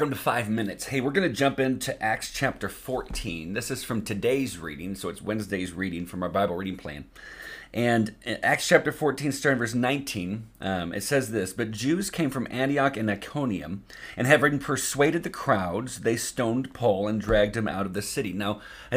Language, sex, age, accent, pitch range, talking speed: English, male, 40-59, American, 105-140 Hz, 195 wpm